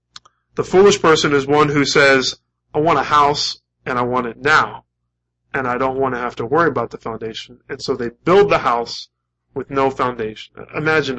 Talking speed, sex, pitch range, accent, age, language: 200 wpm, male, 120-155 Hz, American, 20-39, English